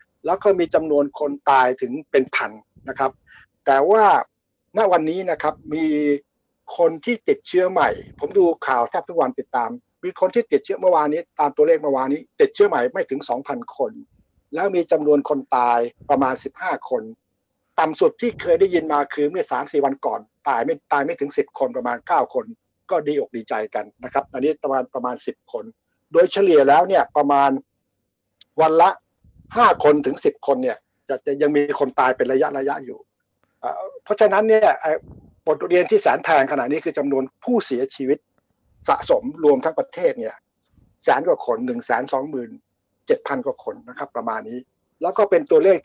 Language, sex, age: Thai, male, 60-79